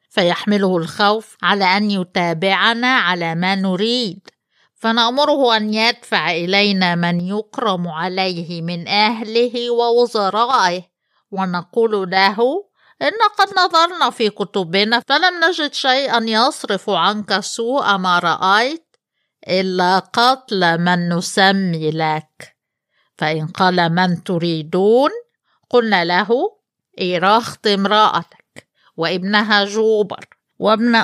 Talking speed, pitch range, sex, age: 95 wpm, 185-230 Hz, female, 50-69